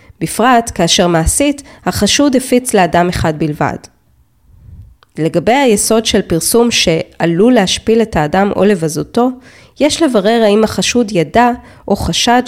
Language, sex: Hebrew, female